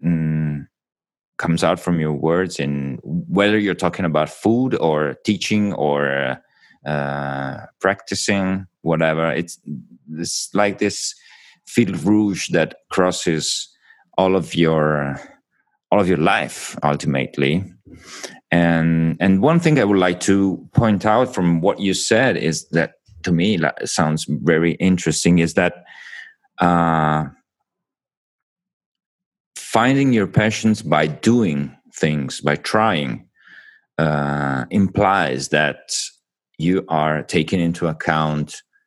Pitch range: 75-100 Hz